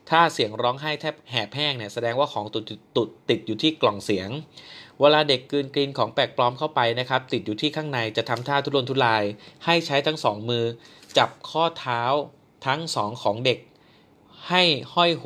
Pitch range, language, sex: 110-145 Hz, Thai, male